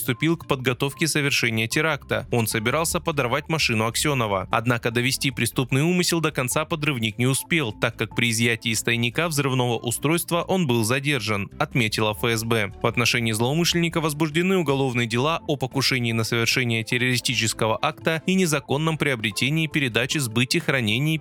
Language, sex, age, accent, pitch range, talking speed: Russian, male, 20-39, native, 120-160 Hz, 140 wpm